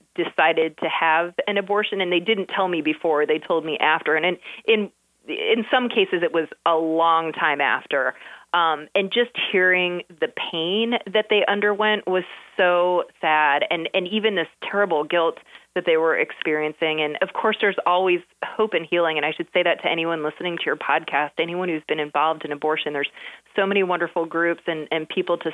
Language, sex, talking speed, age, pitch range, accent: English, female, 195 wpm, 30-49, 160-205 Hz, American